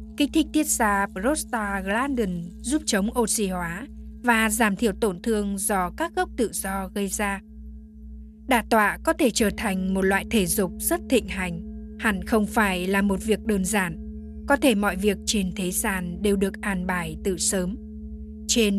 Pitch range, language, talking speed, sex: 180-230 Hz, Vietnamese, 180 wpm, female